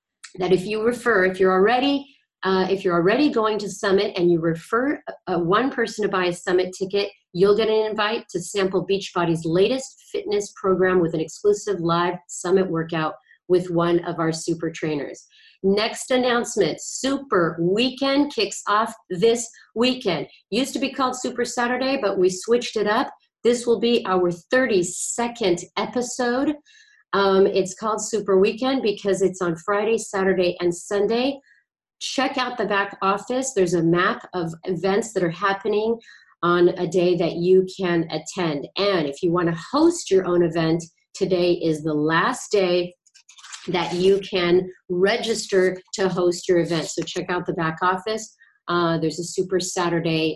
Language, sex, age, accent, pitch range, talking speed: English, female, 40-59, American, 175-225 Hz, 165 wpm